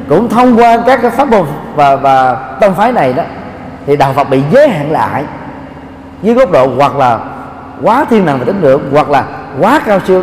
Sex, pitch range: male, 135-190 Hz